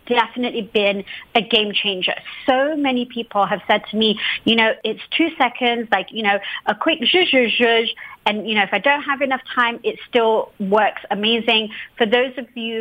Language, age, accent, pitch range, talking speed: English, 30-49, British, 210-260 Hz, 195 wpm